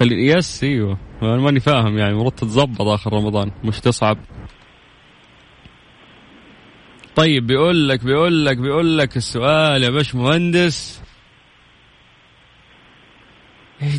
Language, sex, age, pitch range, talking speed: Arabic, male, 30-49, 100-135 Hz, 105 wpm